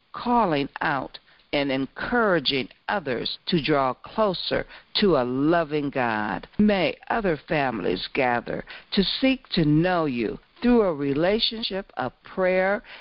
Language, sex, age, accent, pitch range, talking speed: English, female, 60-79, American, 145-230 Hz, 120 wpm